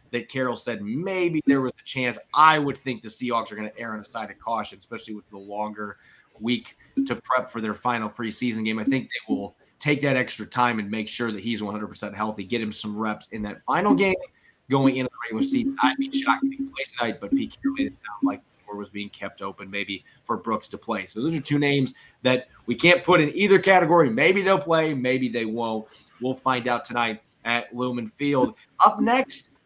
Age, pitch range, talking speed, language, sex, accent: 30-49, 115-185 Hz, 230 wpm, English, male, American